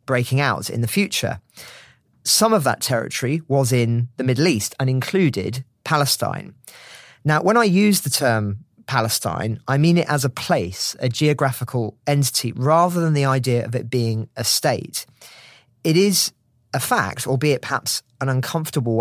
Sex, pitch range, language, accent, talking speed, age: male, 120-150 Hz, English, British, 160 wpm, 40-59